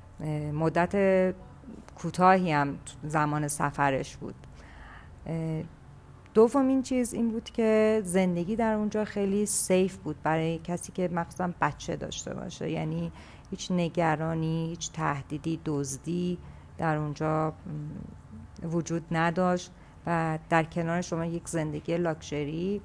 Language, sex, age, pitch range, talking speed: Persian, female, 40-59, 155-190 Hz, 110 wpm